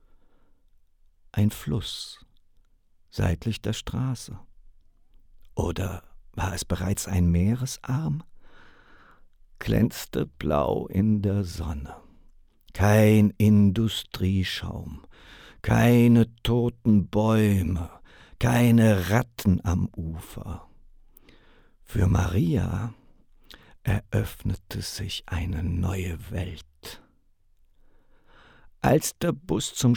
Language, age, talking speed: German, 50-69, 70 wpm